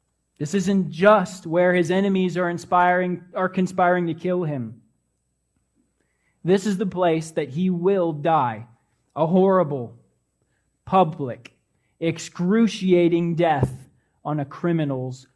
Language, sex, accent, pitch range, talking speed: English, male, American, 140-195 Hz, 115 wpm